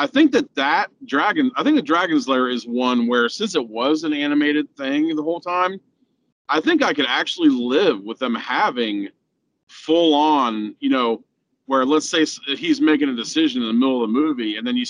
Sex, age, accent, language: male, 40-59, American, English